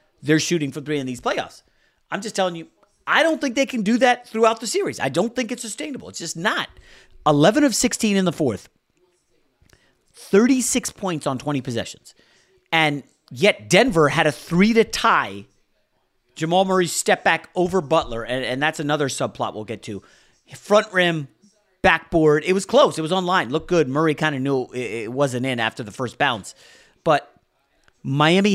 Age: 40-59